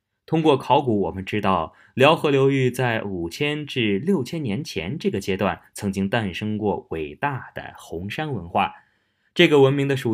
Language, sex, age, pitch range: Chinese, male, 20-39, 100-140 Hz